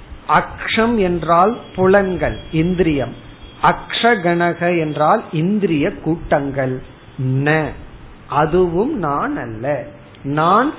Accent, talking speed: native, 65 wpm